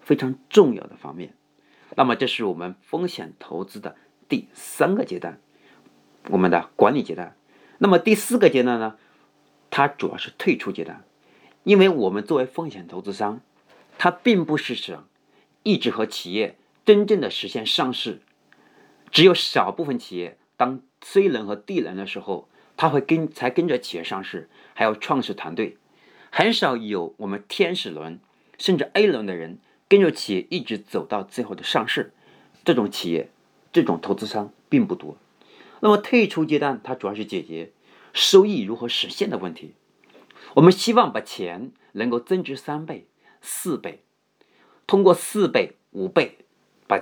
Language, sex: Chinese, male